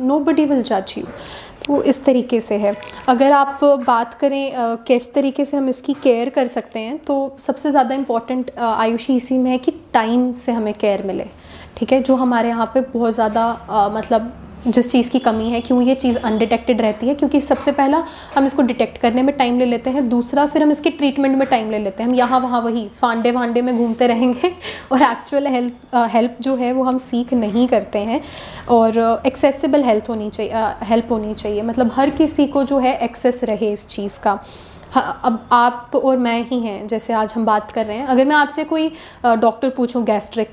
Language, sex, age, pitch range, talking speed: Hindi, female, 10-29, 230-280 Hz, 210 wpm